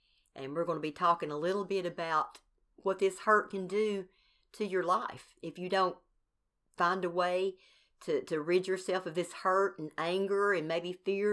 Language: English